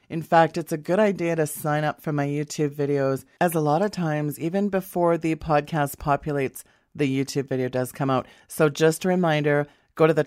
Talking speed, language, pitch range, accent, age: 210 wpm, English, 135-160 Hz, American, 30-49